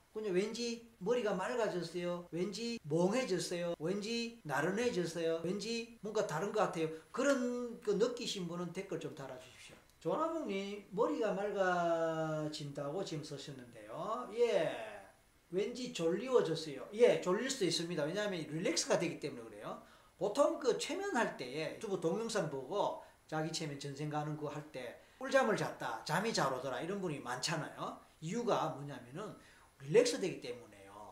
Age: 40-59